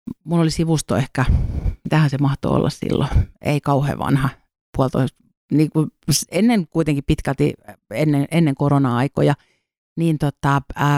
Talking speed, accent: 130 wpm, native